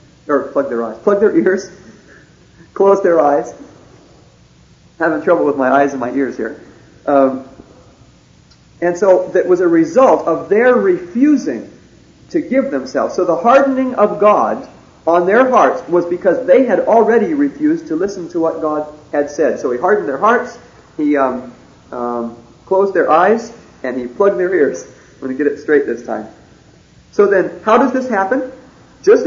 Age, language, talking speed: 50-69, English, 170 wpm